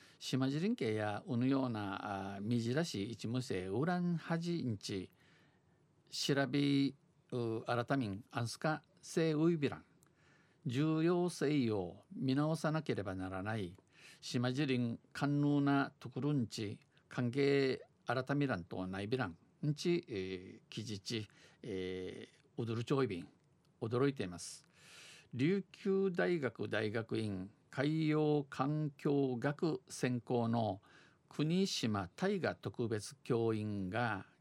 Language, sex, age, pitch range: Japanese, male, 50-69, 105-150 Hz